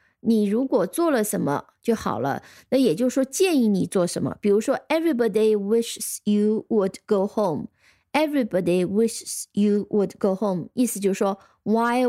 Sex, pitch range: female, 190-240 Hz